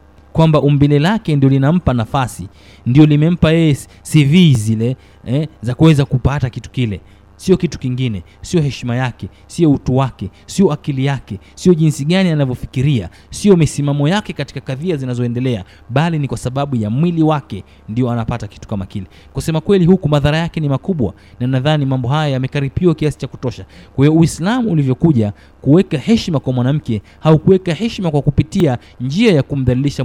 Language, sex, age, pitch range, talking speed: Swahili, male, 30-49, 110-155 Hz, 160 wpm